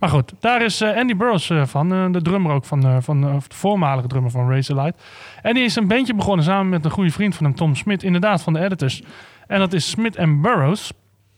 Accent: Dutch